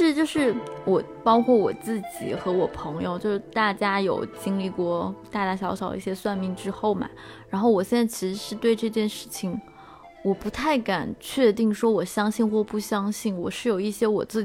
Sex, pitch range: female, 195-225 Hz